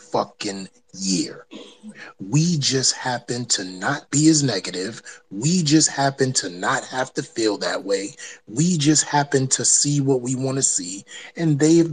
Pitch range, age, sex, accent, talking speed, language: 125-170 Hz, 30-49, male, American, 160 wpm, English